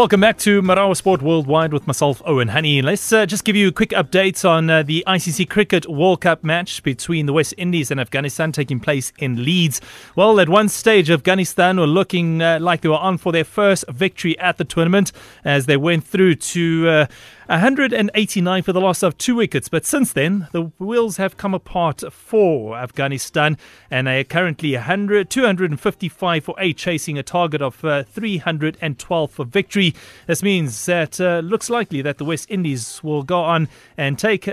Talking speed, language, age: 190 wpm, English, 30-49